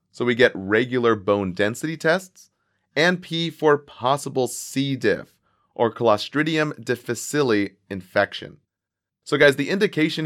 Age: 30-49